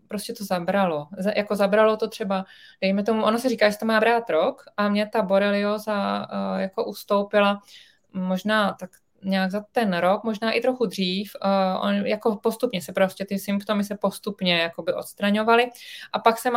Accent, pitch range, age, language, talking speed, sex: native, 190-225 Hz, 20-39, Czech, 165 wpm, female